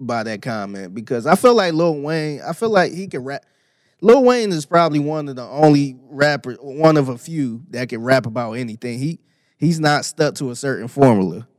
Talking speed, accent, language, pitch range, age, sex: 210 wpm, American, English, 120-150 Hz, 20-39, male